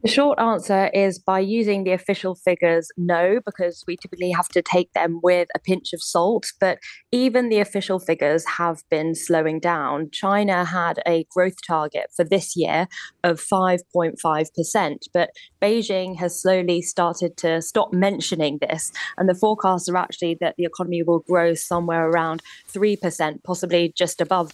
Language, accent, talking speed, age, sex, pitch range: English, British, 160 wpm, 20-39, female, 170-190 Hz